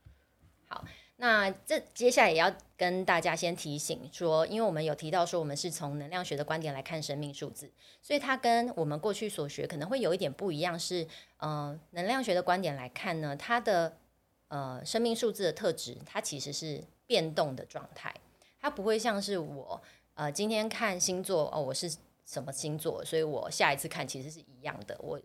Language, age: Chinese, 30-49